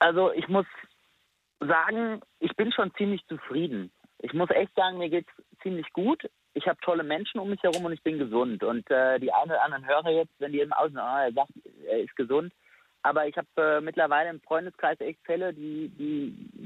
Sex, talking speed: male, 200 wpm